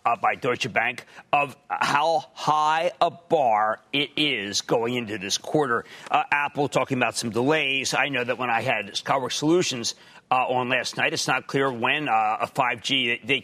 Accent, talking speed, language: American, 185 wpm, English